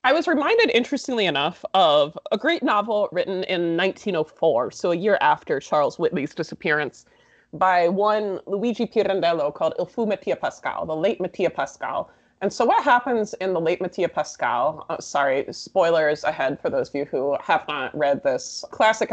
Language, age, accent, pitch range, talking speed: English, 20-39, American, 160-215 Hz, 175 wpm